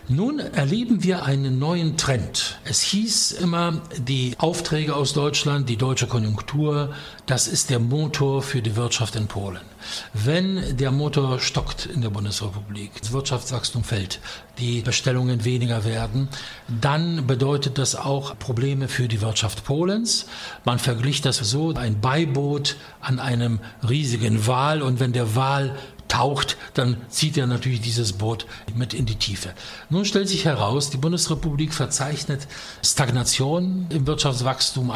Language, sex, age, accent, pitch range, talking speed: English, male, 60-79, German, 120-150 Hz, 140 wpm